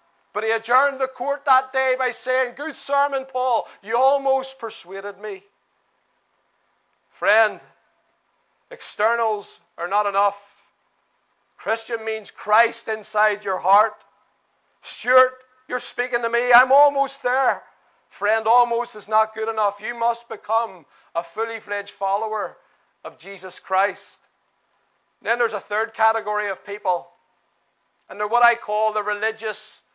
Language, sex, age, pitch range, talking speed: English, male, 40-59, 220-260 Hz, 130 wpm